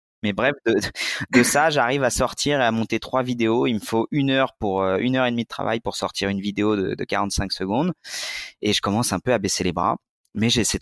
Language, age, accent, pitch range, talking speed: French, 20-39, French, 90-125 Hz, 250 wpm